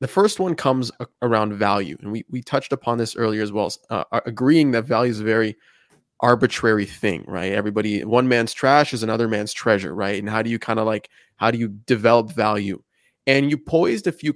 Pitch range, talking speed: 110-140 Hz, 215 wpm